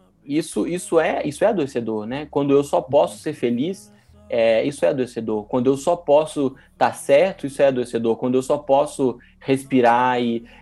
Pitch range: 120-150 Hz